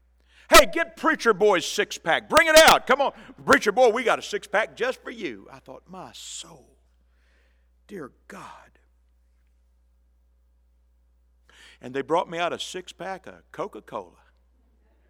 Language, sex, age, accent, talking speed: English, male, 60-79, American, 135 wpm